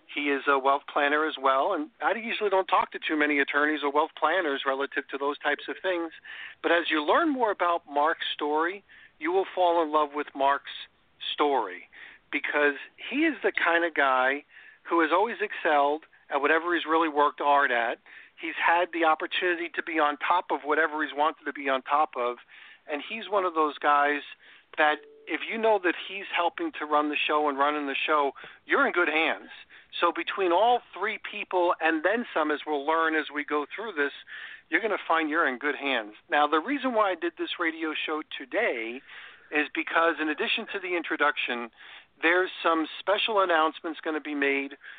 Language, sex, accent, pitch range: English, male, American, 140-175 Hz